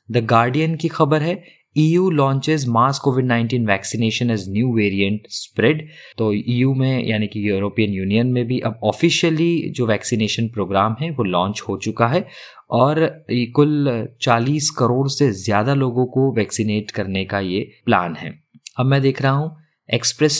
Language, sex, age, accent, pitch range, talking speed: Hindi, male, 20-39, native, 110-135 Hz, 160 wpm